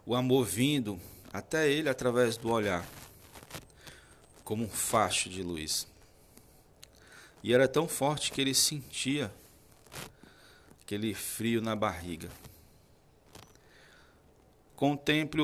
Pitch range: 100-130 Hz